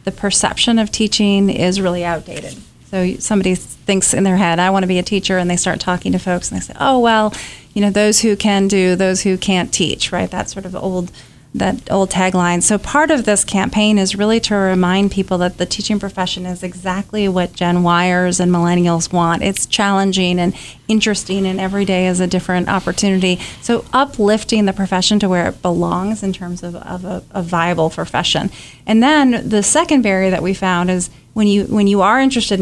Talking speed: 205 wpm